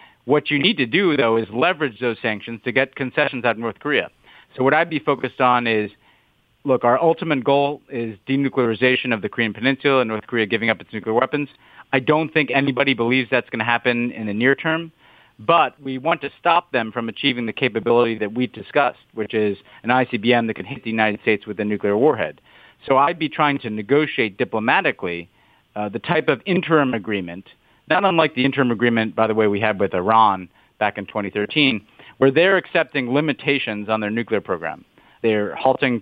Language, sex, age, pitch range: English, male, 40-59, 110-140 Hz